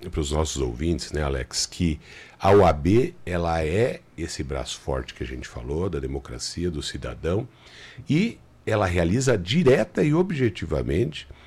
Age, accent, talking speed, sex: 60-79, Brazilian, 145 wpm, male